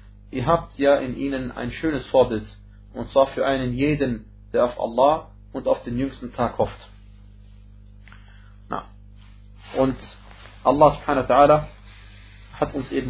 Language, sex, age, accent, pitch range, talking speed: German, male, 30-49, German, 100-135 Hz, 140 wpm